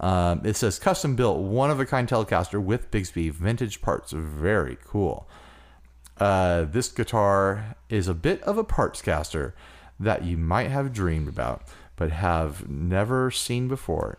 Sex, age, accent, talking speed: male, 30-49, American, 150 wpm